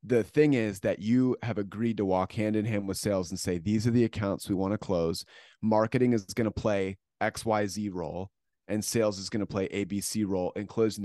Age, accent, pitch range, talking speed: 30-49, American, 95-115 Hz, 225 wpm